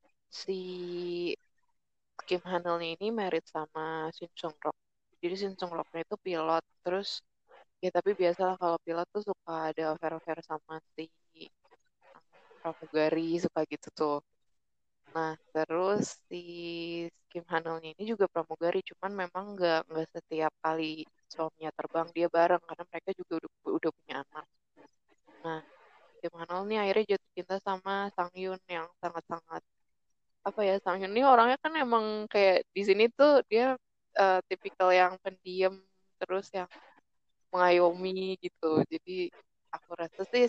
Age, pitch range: 20-39, 160-195 Hz